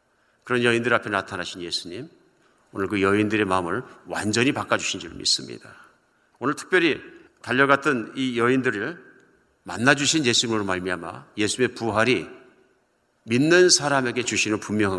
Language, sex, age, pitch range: Korean, male, 50-69, 115-155 Hz